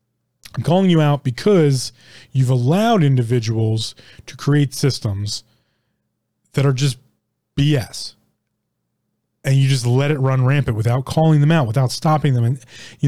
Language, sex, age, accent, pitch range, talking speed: English, male, 20-39, American, 115-145 Hz, 140 wpm